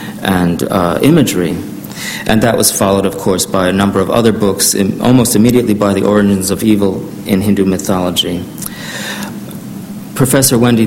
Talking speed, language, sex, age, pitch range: 150 wpm, English, male, 40-59, 100-115 Hz